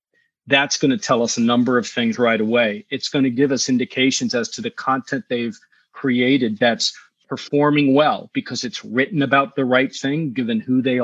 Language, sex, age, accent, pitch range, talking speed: English, male, 40-59, American, 125-185 Hz, 185 wpm